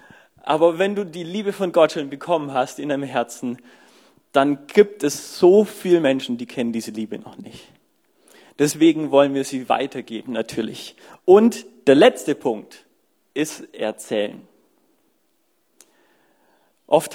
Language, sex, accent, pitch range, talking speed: German, male, German, 135-175 Hz, 135 wpm